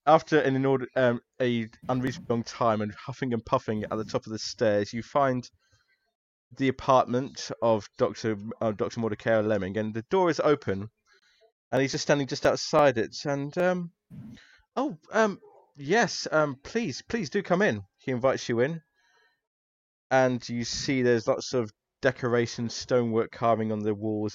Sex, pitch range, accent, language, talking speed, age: male, 110-135 Hz, British, English, 160 wpm, 20-39